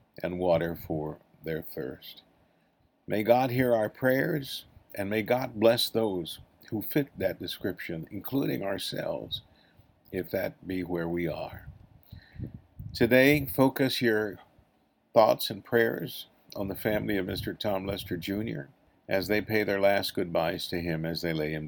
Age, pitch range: 50-69, 85-110 Hz